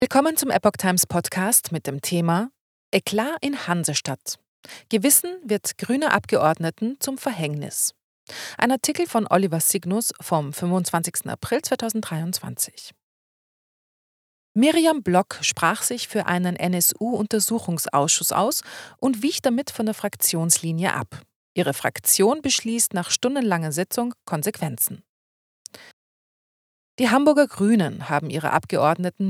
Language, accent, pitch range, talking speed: German, German, 165-230 Hz, 110 wpm